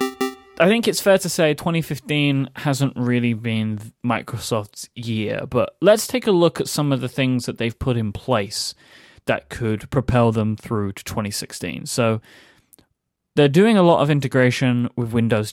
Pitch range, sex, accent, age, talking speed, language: 110-135 Hz, male, British, 20-39, 165 wpm, English